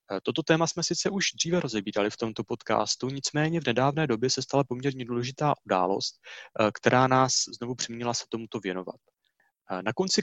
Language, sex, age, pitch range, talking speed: Czech, male, 30-49, 115-140 Hz, 165 wpm